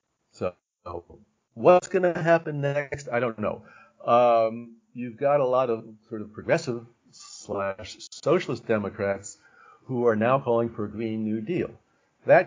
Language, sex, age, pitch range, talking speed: English, male, 50-69, 100-120 Hz, 140 wpm